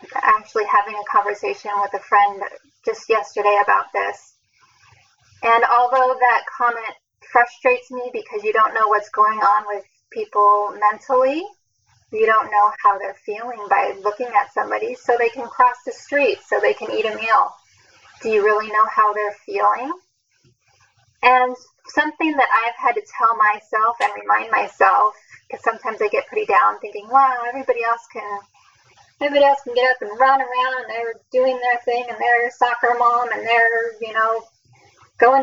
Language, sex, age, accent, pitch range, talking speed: English, female, 10-29, American, 220-345 Hz, 170 wpm